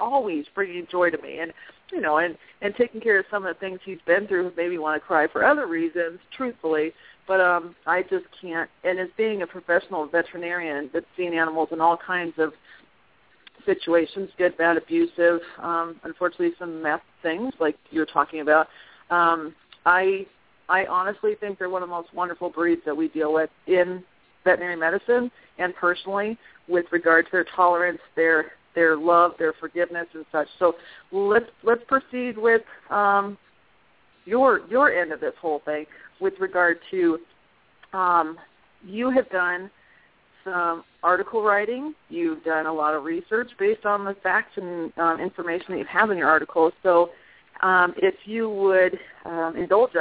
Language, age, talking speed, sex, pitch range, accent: English, 40-59, 175 wpm, female, 165-200 Hz, American